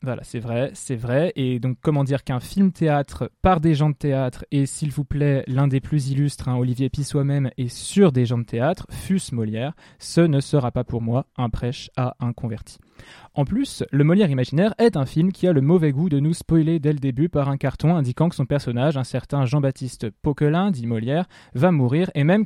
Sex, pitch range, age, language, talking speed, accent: male, 125-155 Hz, 20-39, French, 225 wpm, French